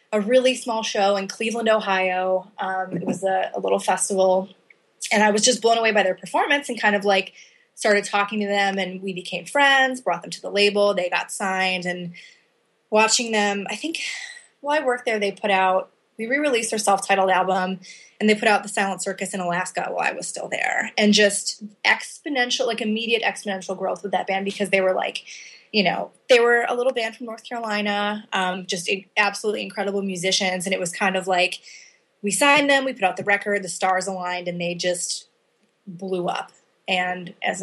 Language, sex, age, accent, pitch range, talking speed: English, female, 20-39, American, 185-215 Hz, 205 wpm